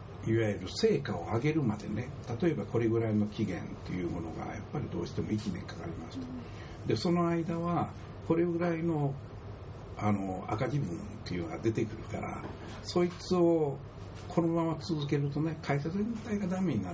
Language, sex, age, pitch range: Japanese, male, 60-79, 105-165 Hz